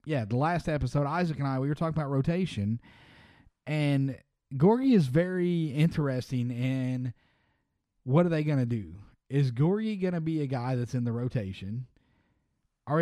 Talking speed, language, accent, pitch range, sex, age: 165 wpm, English, American, 120-145 Hz, male, 30-49